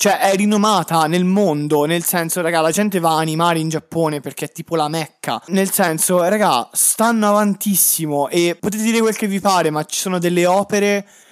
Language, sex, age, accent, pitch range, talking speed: Italian, male, 20-39, native, 145-180 Hz, 195 wpm